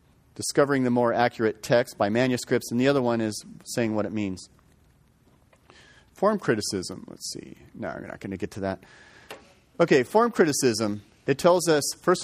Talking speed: 170 wpm